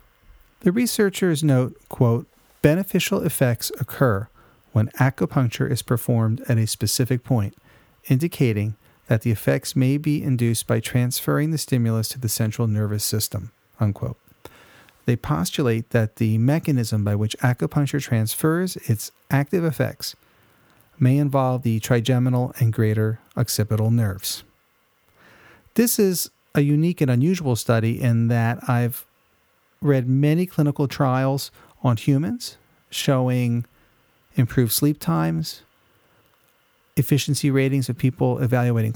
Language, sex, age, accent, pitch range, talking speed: English, male, 40-59, American, 115-145 Hz, 120 wpm